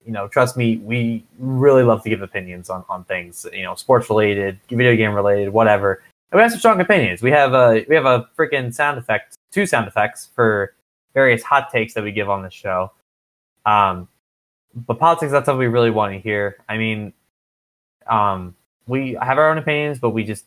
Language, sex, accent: English, male, American